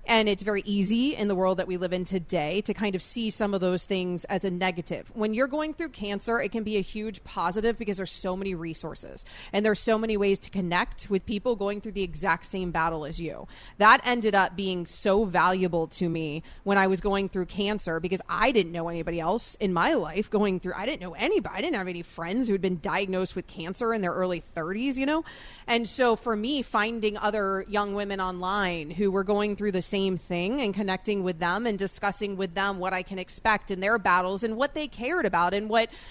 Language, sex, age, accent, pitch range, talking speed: English, female, 30-49, American, 185-225 Hz, 235 wpm